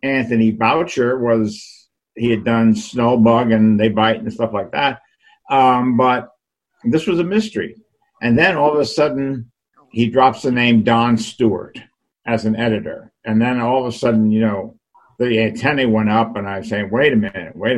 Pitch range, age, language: 110-130 Hz, 50-69, English